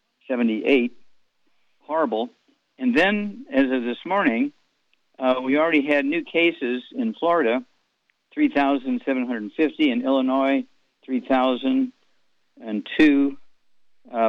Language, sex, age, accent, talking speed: English, male, 50-69, American, 85 wpm